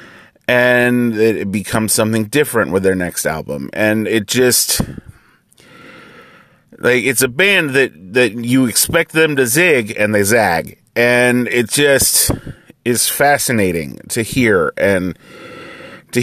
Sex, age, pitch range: male, 30-49, 110-150 Hz